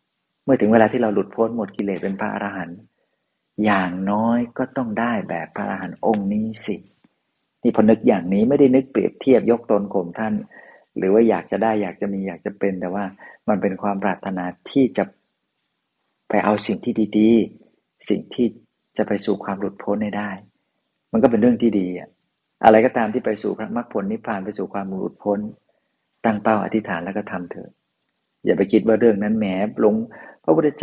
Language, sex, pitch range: Thai, male, 100-115 Hz